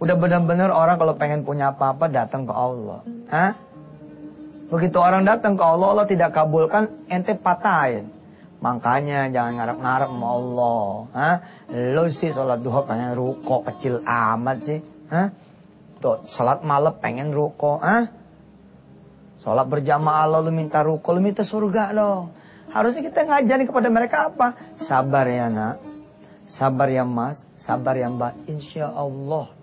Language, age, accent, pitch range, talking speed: English, 30-49, Indonesian, 150-205 Hz, 140 wpm